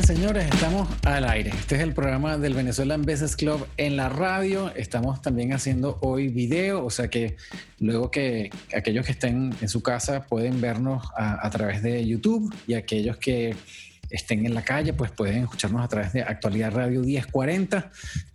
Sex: male